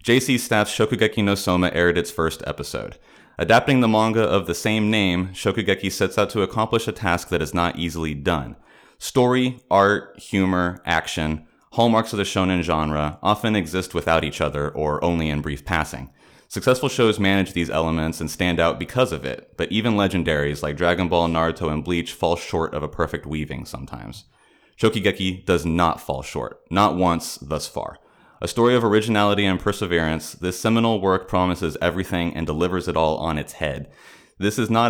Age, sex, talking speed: 30-49, male, 180 wpm